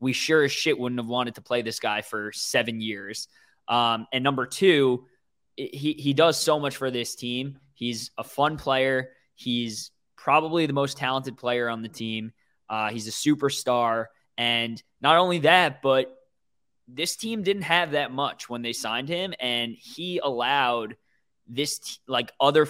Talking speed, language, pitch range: 175 wpm, English, 120-150 Hz